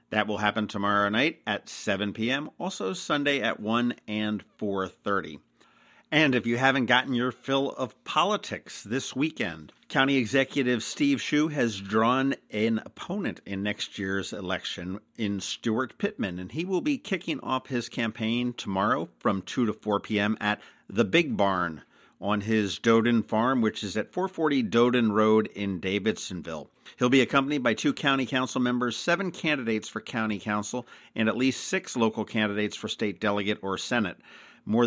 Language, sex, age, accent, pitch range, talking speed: English, male, 50-69, American, 105-130 Hz, 165 wpm